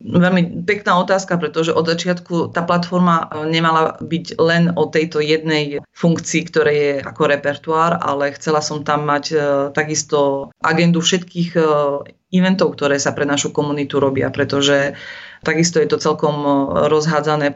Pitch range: 150-170 Hz